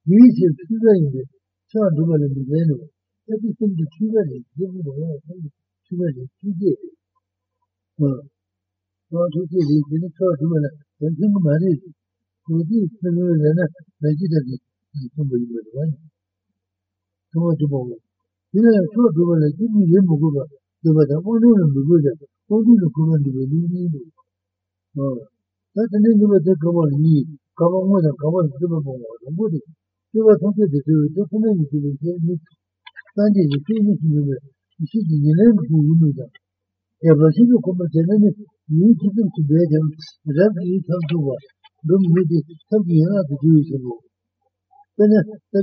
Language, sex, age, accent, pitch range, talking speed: Italian, male, 60-79, Indian, 145-195 Hz, 35 wpm